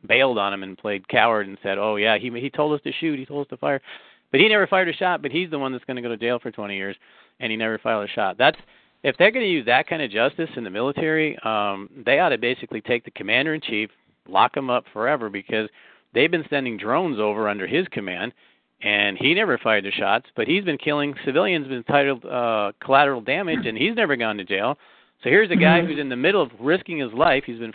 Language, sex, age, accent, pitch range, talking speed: English, male, 40-59, American, 110-150 Hz, 250 wpm